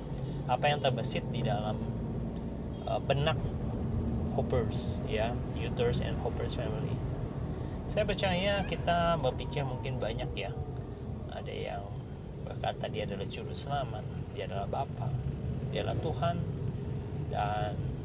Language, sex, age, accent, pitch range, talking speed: Indonesian, male, 30-49, native, 125-140 Hz, 110 wpm